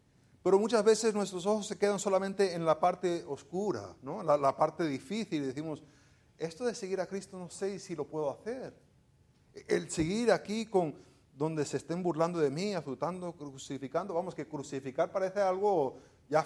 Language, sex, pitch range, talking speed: Spanish, male, 130-180 Hz, 170 wpm